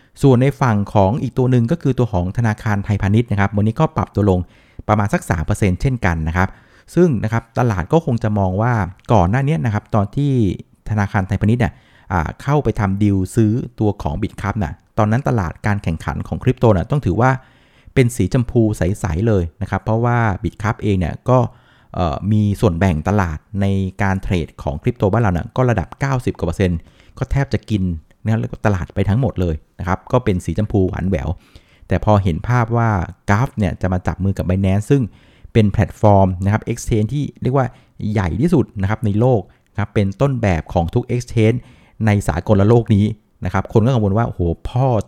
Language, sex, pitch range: Thai, male, 95-120 Hz